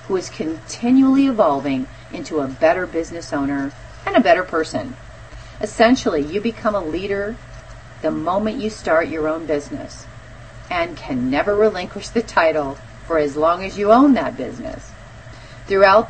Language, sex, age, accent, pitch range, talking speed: English, female, 40-59, American, 140-215 Hz, 150 wpm